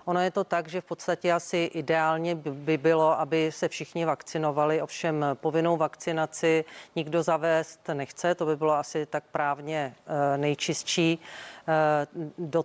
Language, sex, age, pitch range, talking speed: Czech, female, 40-59, 155-170 Hz, 140 wpm